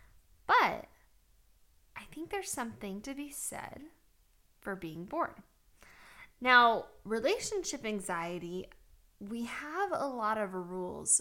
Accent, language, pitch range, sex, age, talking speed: American, English, 180-270 Hz, female, 10-29, 105 wpm